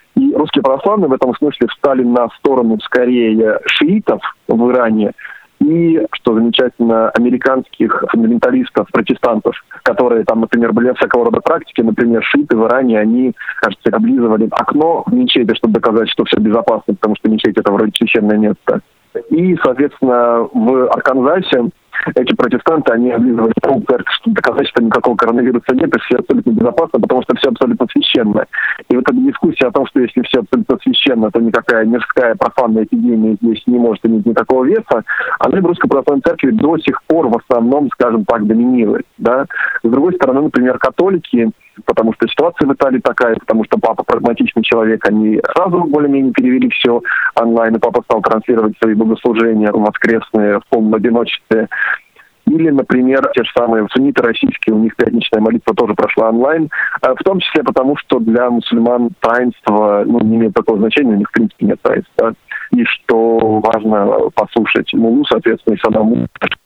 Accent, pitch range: native, 110-145 Hz